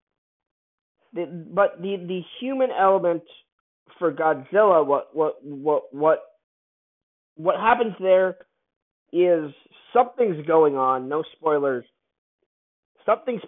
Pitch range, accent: 135-185 Hz, American